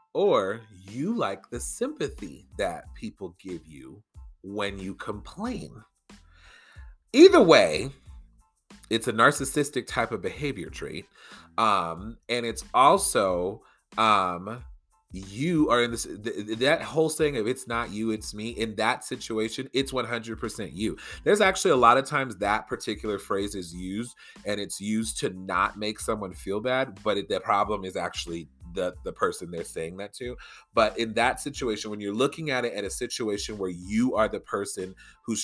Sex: male